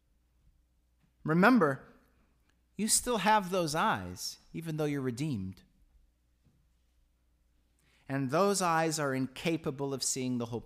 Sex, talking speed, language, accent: male, 105 wpm, English, American